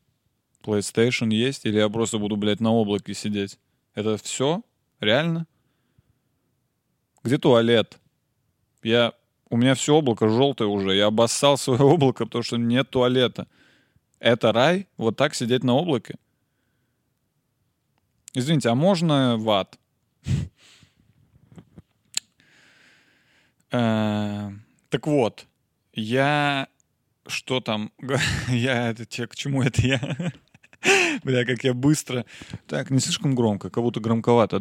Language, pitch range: Russian, 110-135 Hz